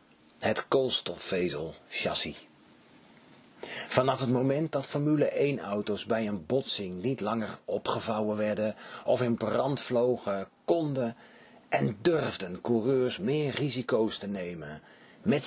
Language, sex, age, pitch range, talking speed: Dutch, male, 40-59, 110-135 Hz, 115 wpm